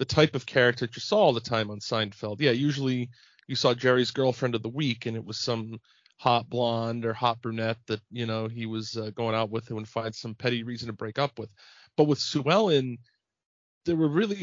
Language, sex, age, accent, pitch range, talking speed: English, male, 30-49, American, 115-140 Hz, 235 wpm